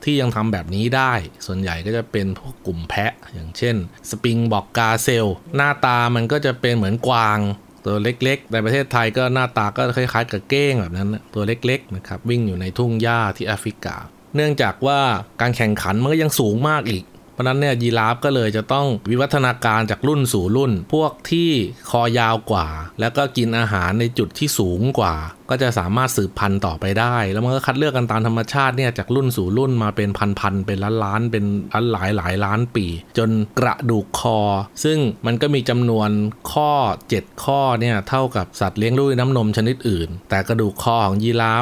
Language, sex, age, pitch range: Thai, male, 20-39, 100-130 Hz